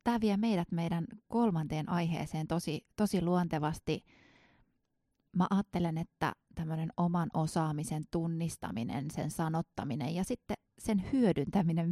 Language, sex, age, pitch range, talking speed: Finnish, female, 30-49, 165-185 Hz, 110 wpm